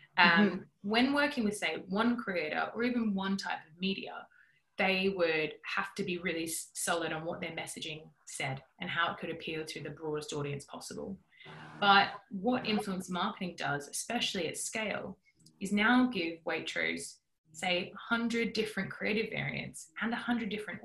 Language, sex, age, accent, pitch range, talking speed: English, female, 20-39, Australian, 165-215 Hz, 160 wpm